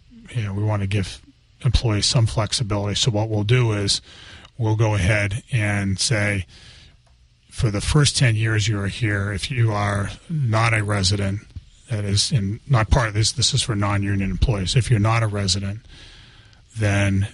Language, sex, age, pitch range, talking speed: English, male, 30-49, 100-120 Hz, 170 wpm